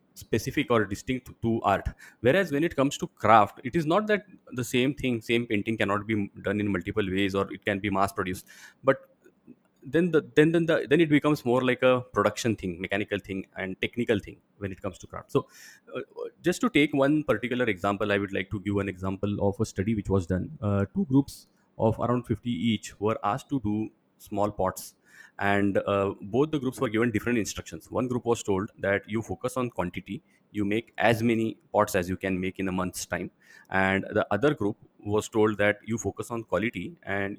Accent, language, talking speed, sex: Indian, English, 215 wpm, male